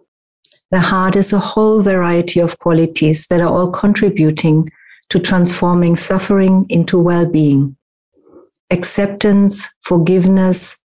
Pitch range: 170-195 Hz